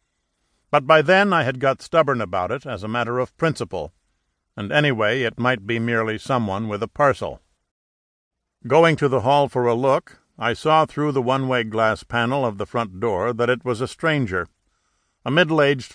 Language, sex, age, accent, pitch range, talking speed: English, male, 60-79, American, 105-140 Hz, 185 wpm